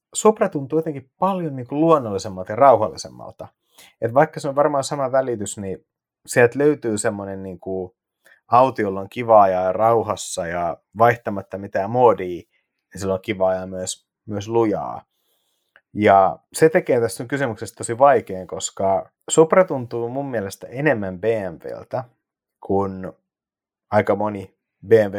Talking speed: 135 wpm